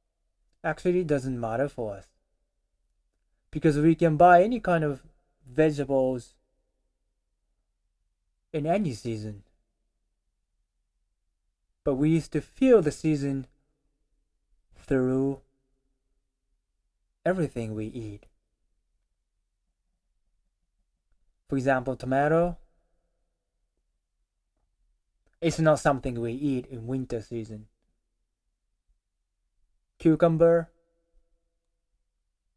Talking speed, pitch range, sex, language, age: 75 wpm, 90-135 Hz, male, English, 20-39